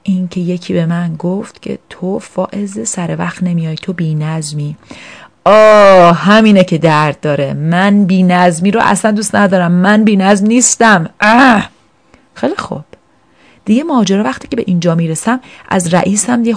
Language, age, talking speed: Persian, 30-49, 145 wpm